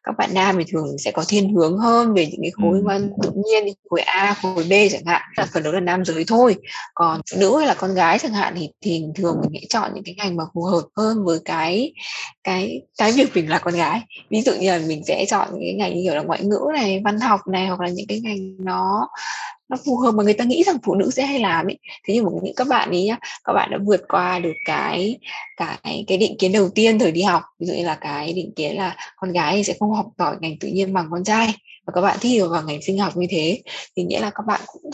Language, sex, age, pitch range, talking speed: Vietnamese, female, 20-39, 170-215 Hz, 275 wpm